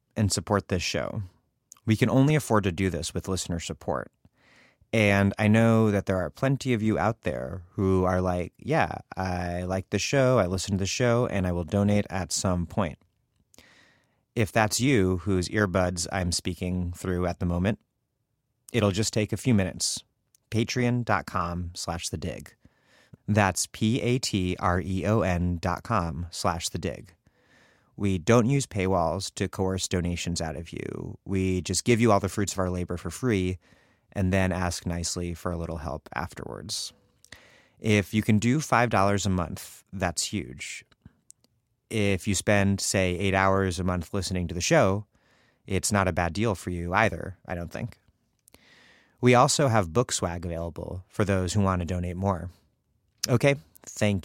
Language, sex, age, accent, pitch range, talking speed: English, male, 30-49, American, 90-110 Hz, 165 wpm